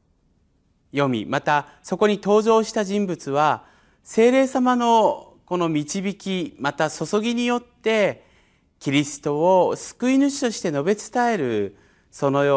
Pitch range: 140-215 Hz